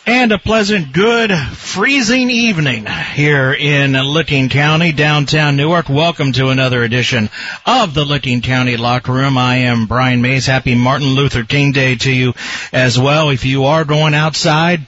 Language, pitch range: English, 125-165 Hz